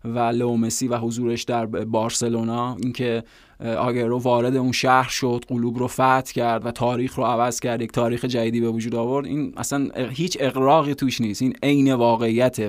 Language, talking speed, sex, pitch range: Persian, 180 wpm, male, 115-130 Hz